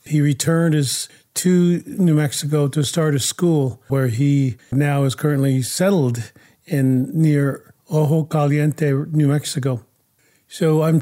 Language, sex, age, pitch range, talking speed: English, male, 40-59, 135-155 Hz, 125 wpm